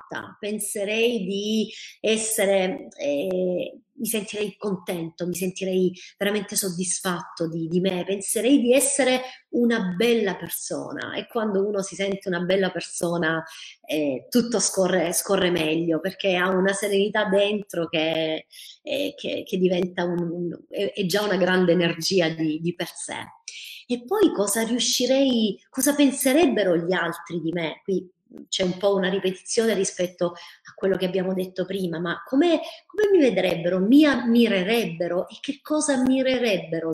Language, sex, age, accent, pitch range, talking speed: Italian, female, 30-49, native, 180-225 Hz, 145 wpm